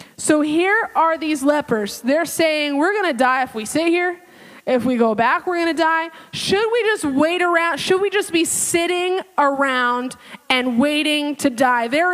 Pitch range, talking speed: 265-355 Hz, 195 wpm